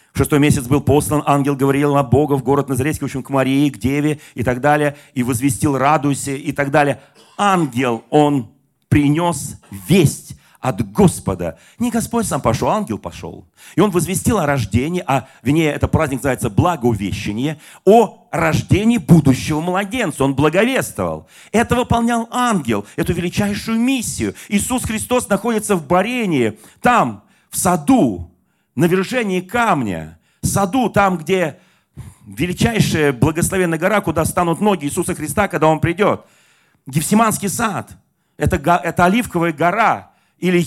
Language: Russian